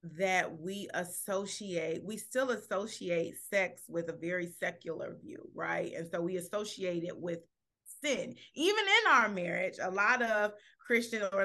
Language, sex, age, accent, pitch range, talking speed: English, female, 30-49, American, 185-225 Hz, 150 wpm